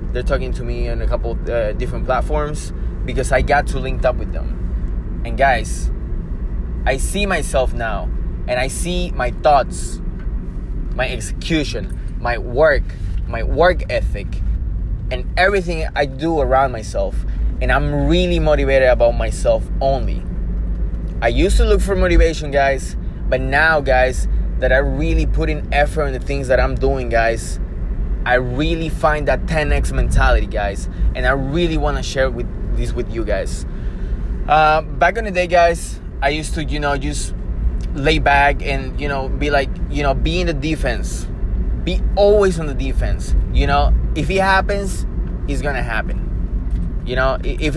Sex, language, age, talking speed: male, English, 20-39, 165 wpm